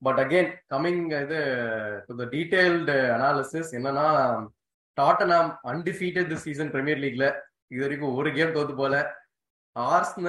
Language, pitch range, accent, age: Tamil, 135-170 Hz, native, 20-39